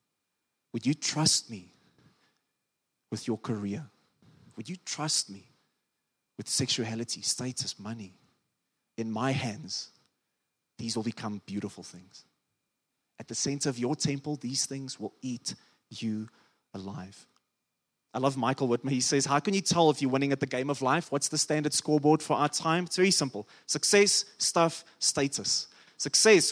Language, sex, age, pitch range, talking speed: English, male, 30-49, 130-175 Hz, 150 wpm